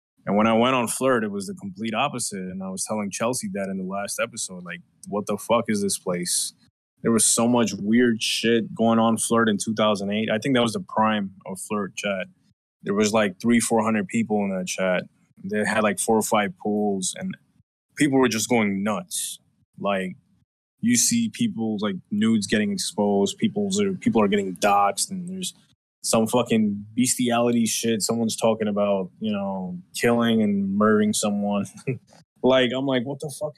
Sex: male